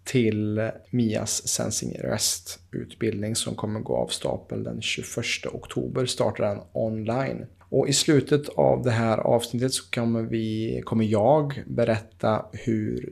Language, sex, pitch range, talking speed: Swedish, male, 100-130 Hz, 135 wpm